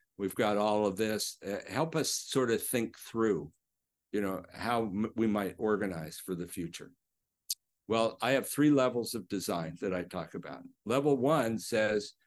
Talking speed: 170 wpm